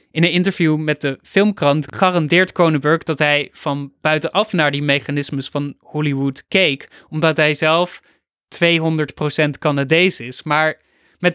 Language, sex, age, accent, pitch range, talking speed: Dutch, male, 20-39, Dutch, 145-175 Hz, 135 wpm